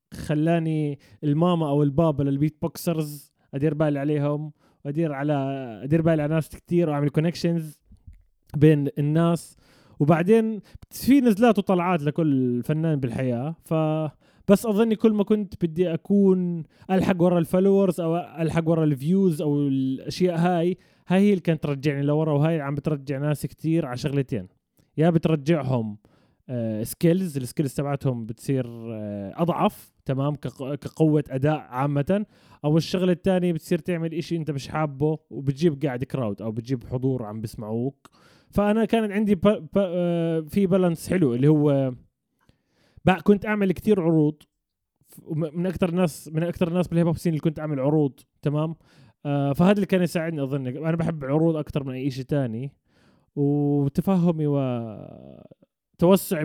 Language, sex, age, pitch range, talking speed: Arabic, male, 20-39, 140-175 Hz, 135 wpm